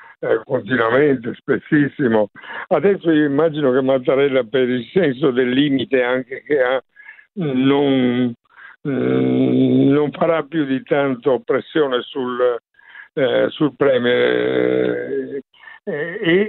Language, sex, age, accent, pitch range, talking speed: Italian, male, 60-79, native, 125-145 Hz, 100 wpm